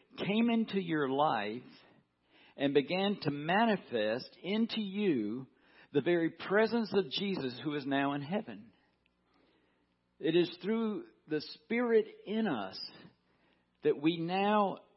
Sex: male